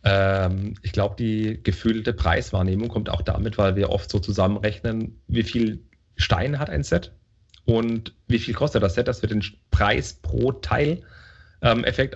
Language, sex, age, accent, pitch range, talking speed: German, male, 30-49, German, 95-120 Hz, 165 wpm